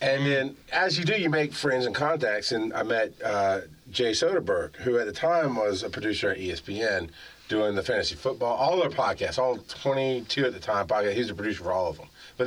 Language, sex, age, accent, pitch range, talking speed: English, male, 30-49, American, 115-145 Hz, 225 wpm